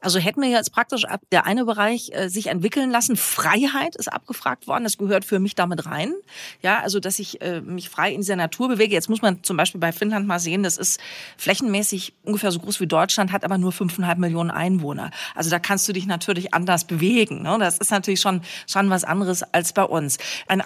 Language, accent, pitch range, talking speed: German, German, 180-225 Hz, 210 wpm